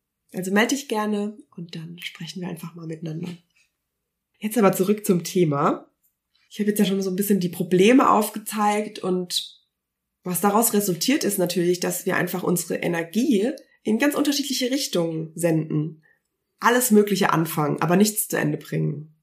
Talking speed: 160 wpm